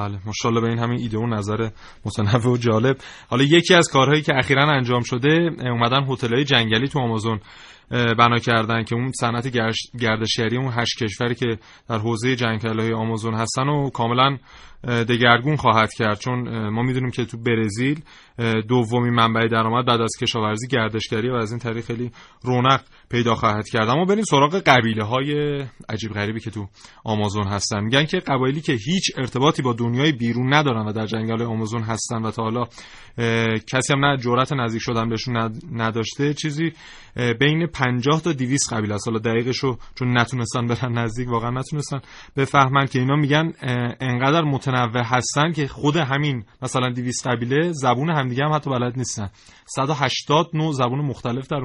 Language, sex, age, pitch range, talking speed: Persian, male, 30-49, 115-140 Hz, 165 wpm